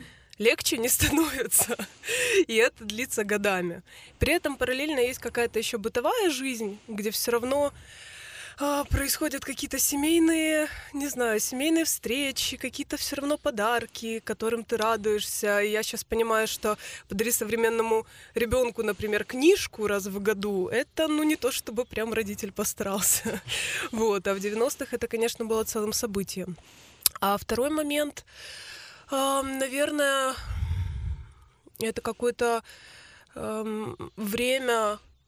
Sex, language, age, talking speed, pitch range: female, Russian, 20-39, 120 wpm, 215-265 Hz